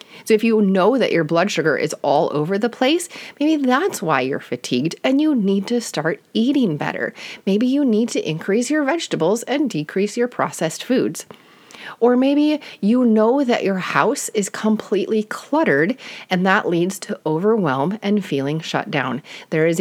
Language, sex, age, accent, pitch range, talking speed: English, female, 30-49, American, 175-240 Hz, 175 wpm